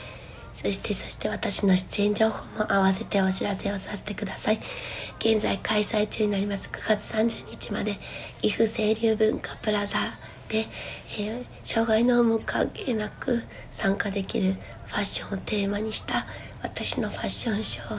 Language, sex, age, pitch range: Japanese, female, 60-79, 195-220 Hz